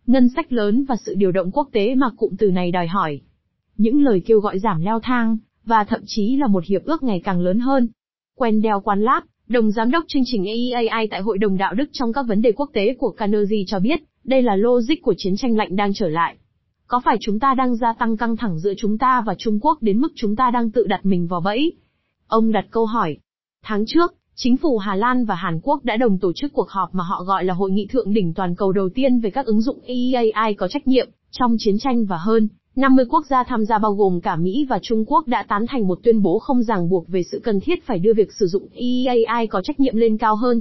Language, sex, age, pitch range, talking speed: Vietnamese, female, 20-39, 200-250 Hz, 255 wpm